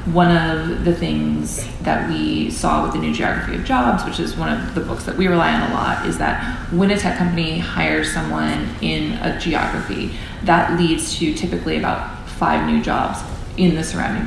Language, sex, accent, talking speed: English, female, American, 200 wpm